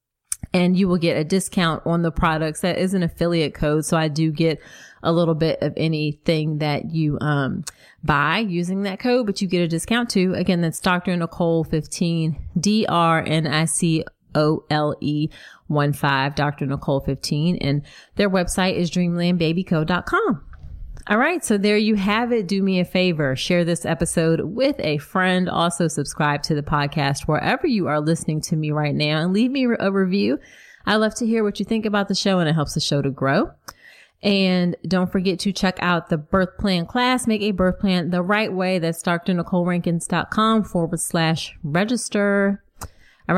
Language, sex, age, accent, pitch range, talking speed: English, female, 30-49, American, 155-190 Hz, 175 wpm